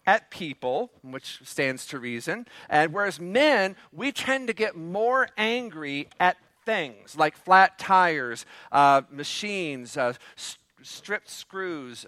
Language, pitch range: English, 155-220 Hz